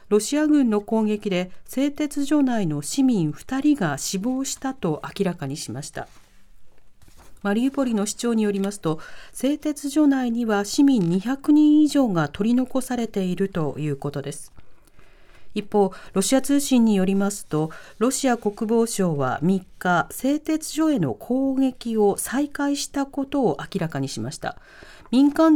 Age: 40-59